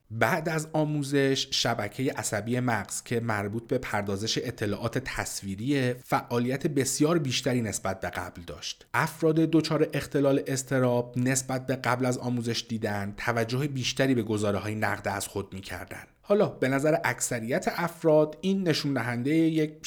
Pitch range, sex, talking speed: 110-150 Hz, male, 140 wpm